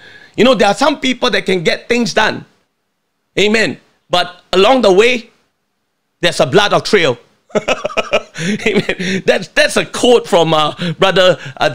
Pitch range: 200-275 Hz